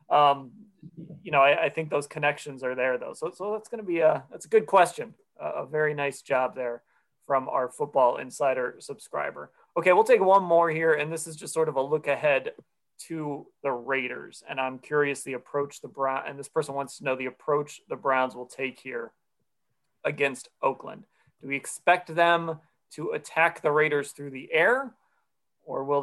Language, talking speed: English, 200 wpm